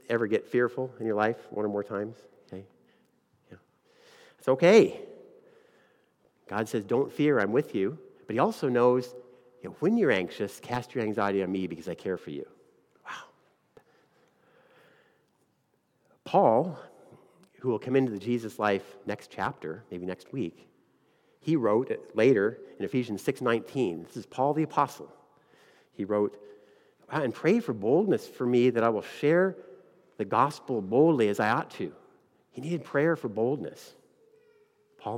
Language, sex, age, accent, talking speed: English, male, 50-69, American, 145 wpm